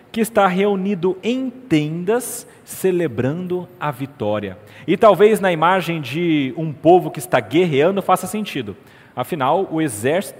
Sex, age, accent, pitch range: male, 40-59, Brazilian, 125-185 Hz